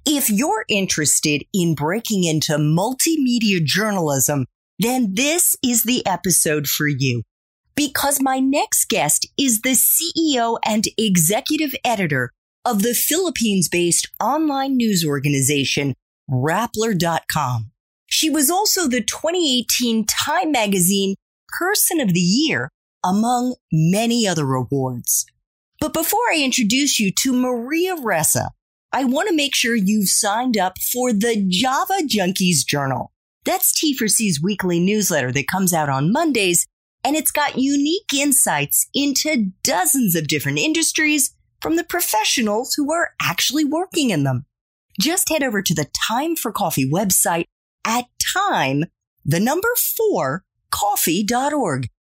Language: English